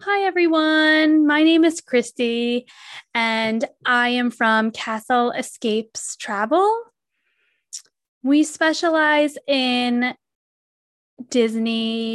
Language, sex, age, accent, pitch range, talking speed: English, female, 10-29, American, 215-275 Hz, 85 wpm